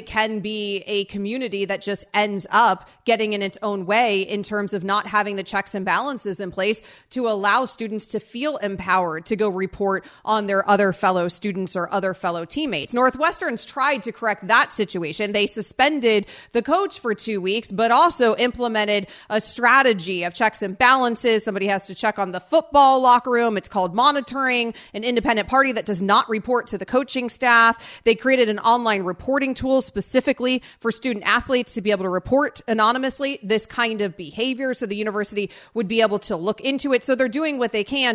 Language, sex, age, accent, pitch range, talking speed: English, female, 30-49, American, 200-245 Hz, 195 wpm